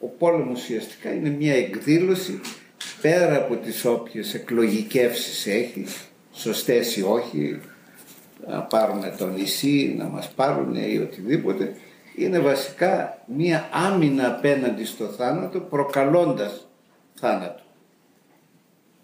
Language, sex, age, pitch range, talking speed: Greek, male, 60-79, 110-150 Hz, 105 wpm